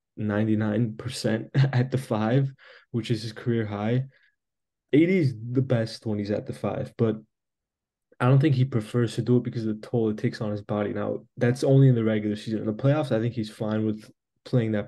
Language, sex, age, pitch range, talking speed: English, male, 20-39, 105-120 Hz, 215 wpm